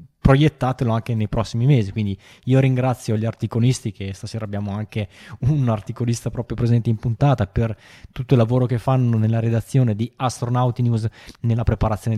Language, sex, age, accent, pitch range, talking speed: Italian, male, 20-39, native, 100-120 Hz, 165 wpm